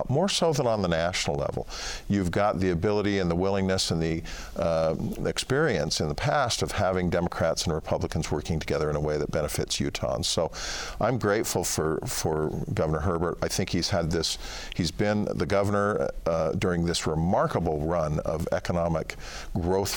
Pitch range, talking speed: 85-110 Hz, 175 wpm